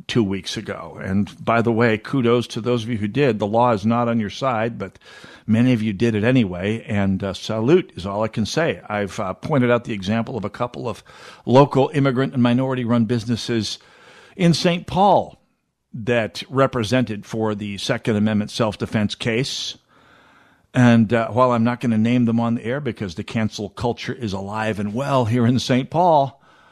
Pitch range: 110-135 Hz